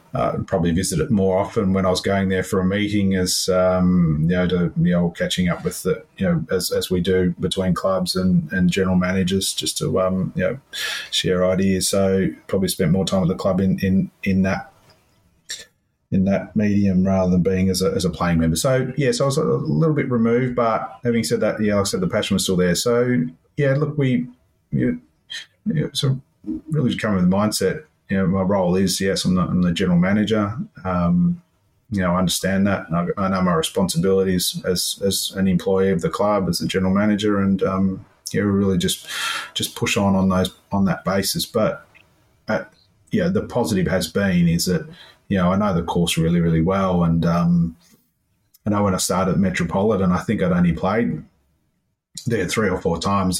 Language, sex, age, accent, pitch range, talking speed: English, male, 30-49, Australian, 90-115 Hz, 215 wpm